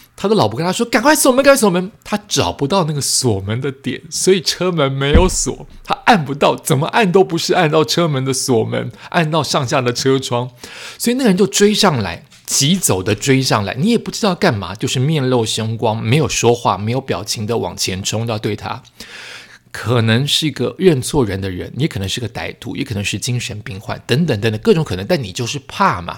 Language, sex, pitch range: Chinese, male, 115-170 Hz